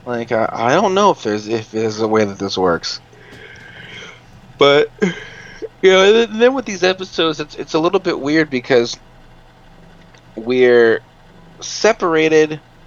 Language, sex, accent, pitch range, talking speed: English, male, American, 100-135 Hz, 145 wpm